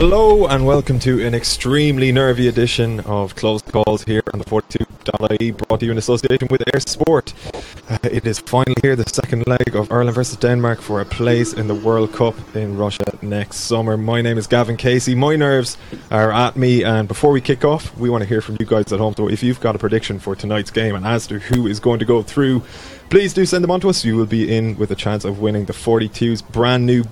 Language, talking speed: English, 240 wpm